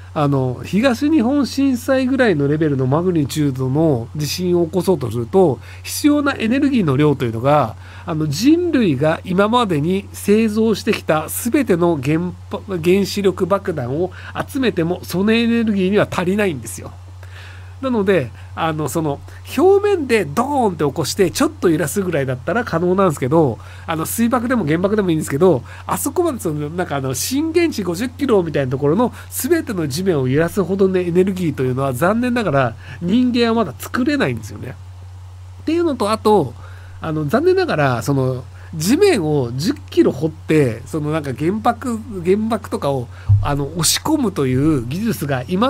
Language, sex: Japanese, male